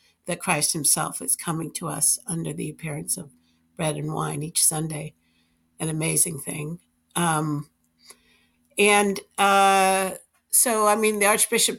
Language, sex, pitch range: English, female, 160-190 Hz